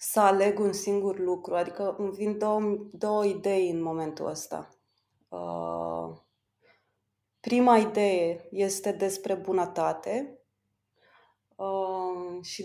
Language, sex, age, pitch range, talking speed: Romanian, female, 20-39, 185-215 Hz, 105 wpm